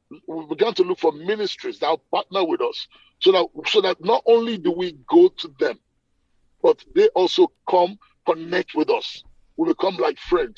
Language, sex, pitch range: English, male, 320-410 Hz